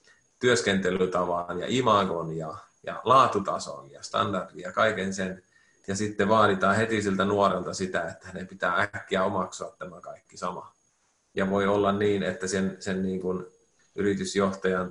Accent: native